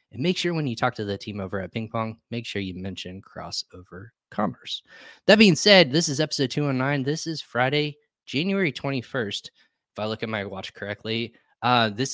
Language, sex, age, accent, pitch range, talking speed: English, male, 20-39, American, 100-125 Hz, 200 wpm